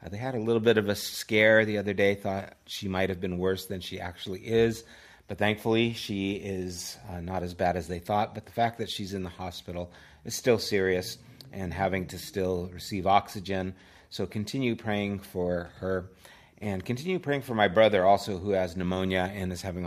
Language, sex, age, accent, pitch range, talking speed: English, male, 30-49, American, 85-105 Hz, 205 wpm